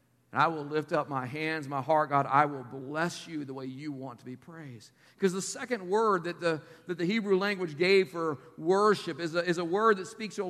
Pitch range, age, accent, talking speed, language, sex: 160-200 Hz, 50-69, American, 245 wpm, English, male